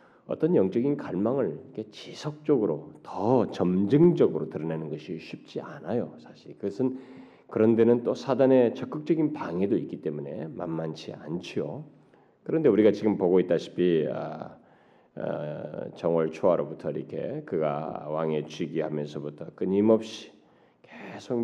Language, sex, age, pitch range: Korean, male, 40-59, 75-90 Hz